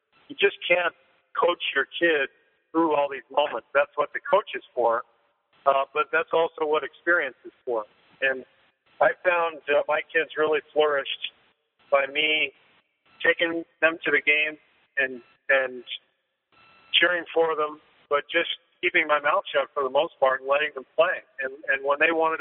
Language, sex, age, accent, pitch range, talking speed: English, male, 50-69, American, 130-160 Hz, 170 wpm